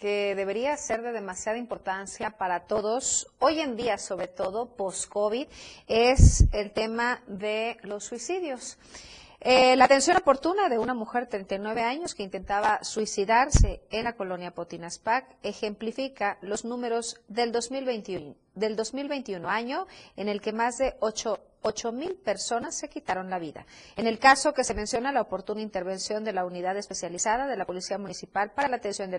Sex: female